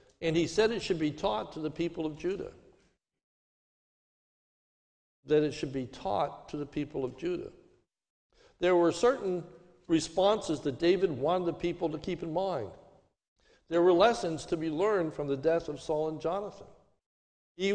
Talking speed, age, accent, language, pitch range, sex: 165 wpm, 60-79, American, English, 140-185 Hz, male